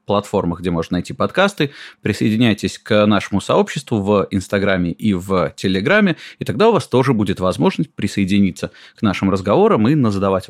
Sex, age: male, 30-49